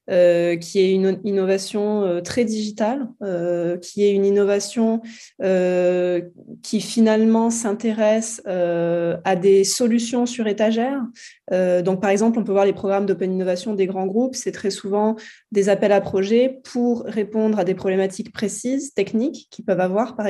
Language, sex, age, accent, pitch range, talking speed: French, female, 20-39, French, 190-230 Hz, 165 wpm